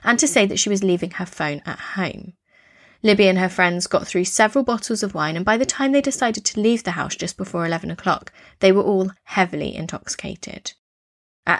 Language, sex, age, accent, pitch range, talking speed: English, female, 20-39, British, 180-230 Hz, 210 wpm